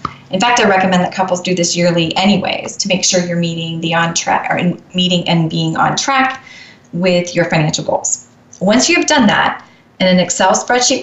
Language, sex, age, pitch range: English, female, 30-49, 175-225 Hz